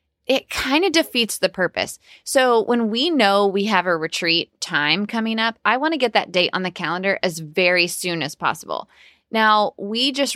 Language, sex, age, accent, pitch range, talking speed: English, female, 20-39, American, 175-215 Hz, 195 wpm